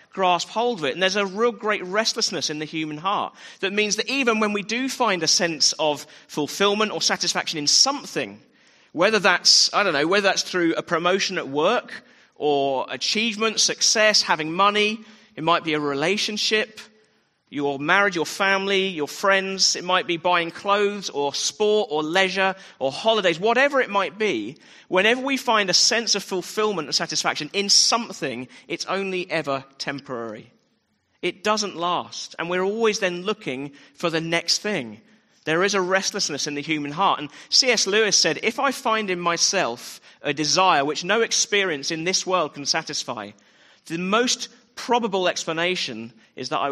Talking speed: 170 wpm